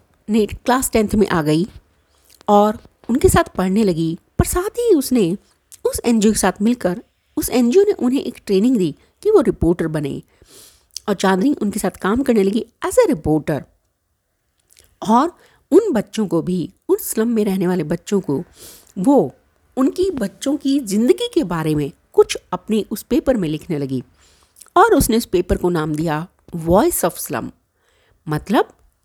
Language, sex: Hindi, female